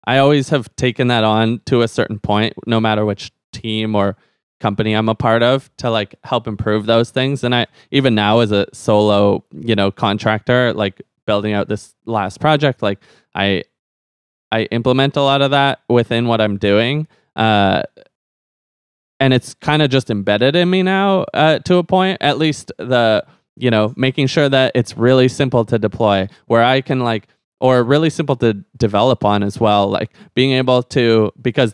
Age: 20-39